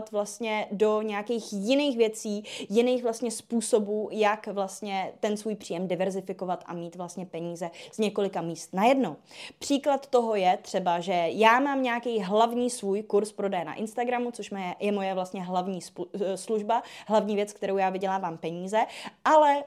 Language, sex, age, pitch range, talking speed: Czech, female, 20-39, 185-220 Hz, 155 wpm